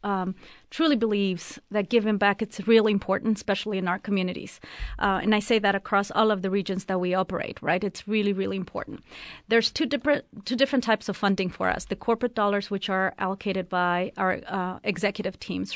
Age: 30-49